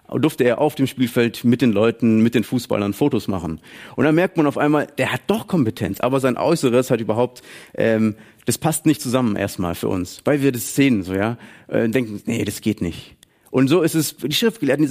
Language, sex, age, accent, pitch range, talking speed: German, male, 30-49, German, 115-150 Hz, 230 wpm